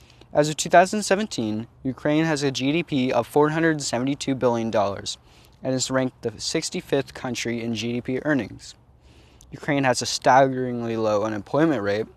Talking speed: 130 wpm